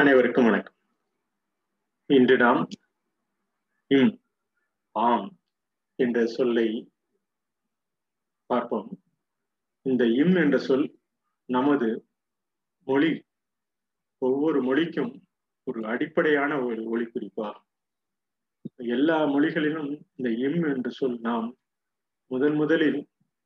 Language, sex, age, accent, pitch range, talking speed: Tamil, male, 30-49, native, 125-155 Hz, 70 wpm